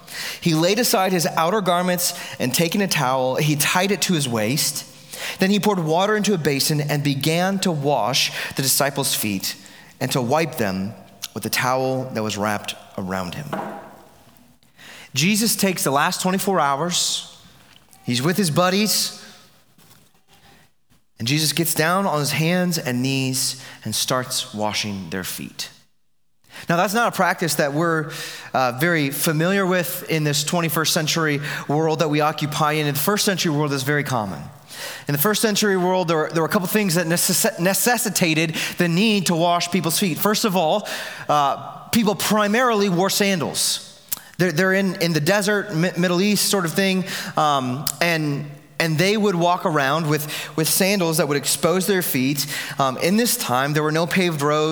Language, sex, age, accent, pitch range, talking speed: English, male, 30-49, American, 140-185 Hz, 175 wpm